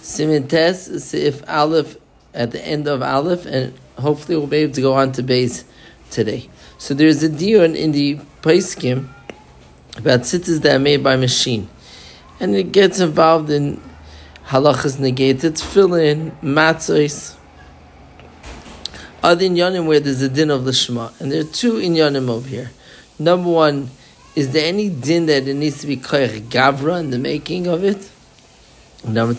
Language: English